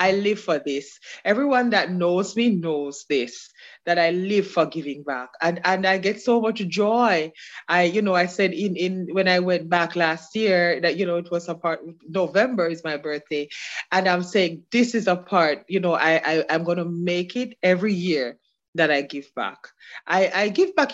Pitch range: 165-205 Hz